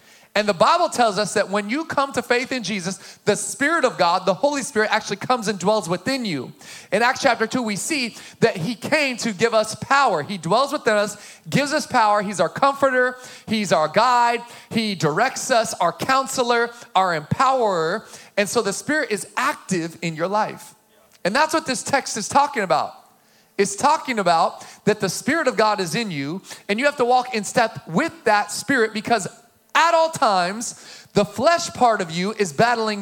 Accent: American